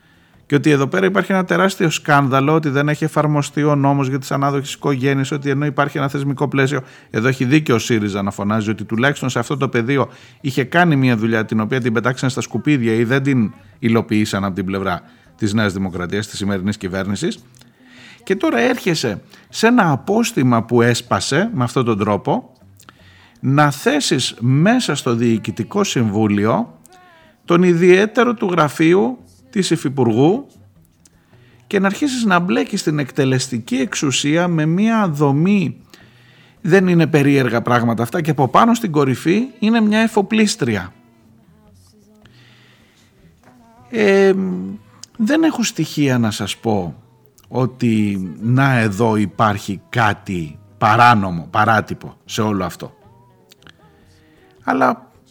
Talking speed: 135 wpm